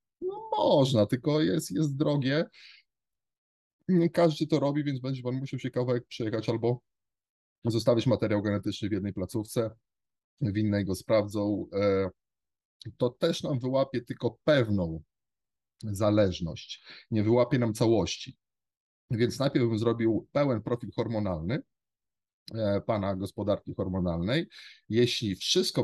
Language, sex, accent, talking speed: Polish, male, native, 115 wpm